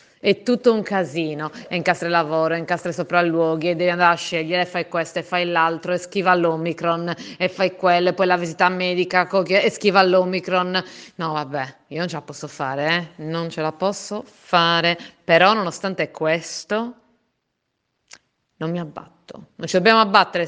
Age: 30-49